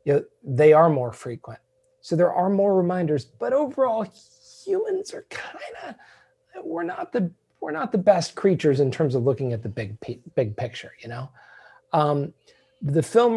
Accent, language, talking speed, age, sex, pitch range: American, English, 170 wpm, 40-59, male, 135-195 Hz